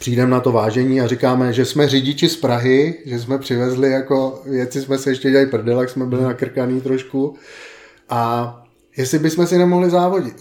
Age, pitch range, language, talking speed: 30-49, 125-150 Hz, Czech, 180 wpm